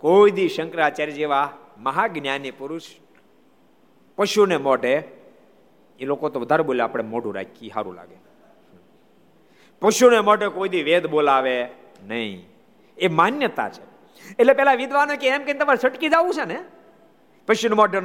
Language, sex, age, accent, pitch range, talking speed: Gujarati, male, 50-69, native, 170-280 Hz, 45 wpm